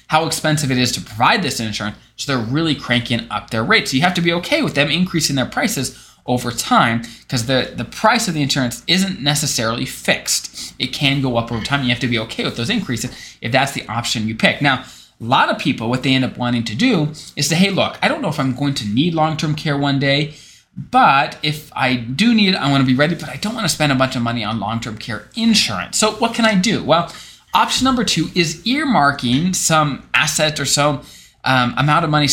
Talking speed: 240 wpm